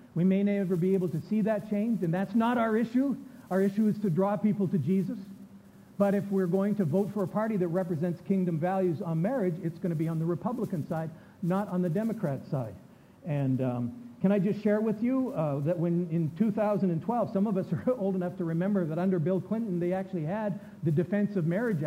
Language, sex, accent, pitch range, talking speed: English, male, American, 180-215 Hz, 225 wpm